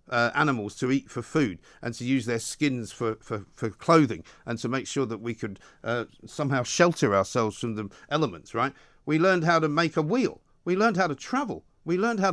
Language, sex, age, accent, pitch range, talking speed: English, male, 50-69, British, 135-190 Hz, 220 wpm